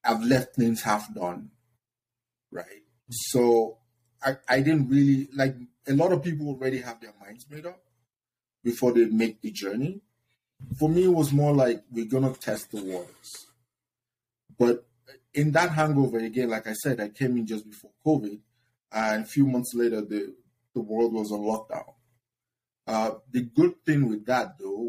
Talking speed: 170 wpm